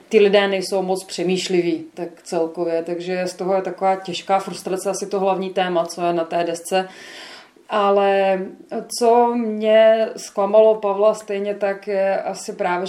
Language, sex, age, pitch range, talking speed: Czech, female, 30-49, 185-205 Hz, 155 wpm